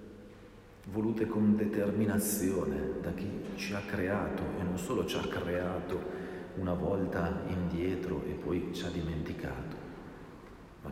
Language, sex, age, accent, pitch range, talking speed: Italian, male, 50-69, native, 95-115 Hz, 125 wpm